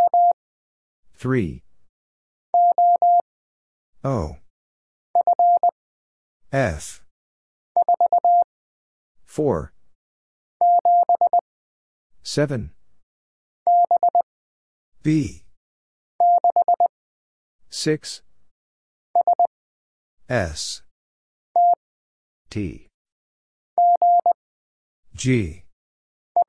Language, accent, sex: English, American, male